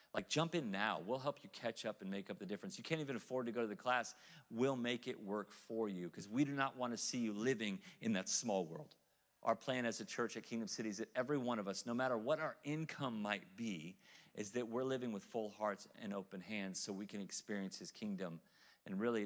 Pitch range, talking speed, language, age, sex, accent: 105-125 Hz, 250 wpm, English, 40-59, male, American